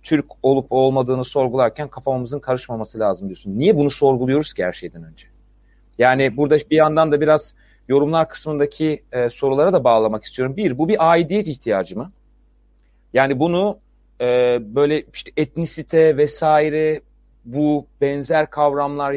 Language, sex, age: Turkish, male, 40-59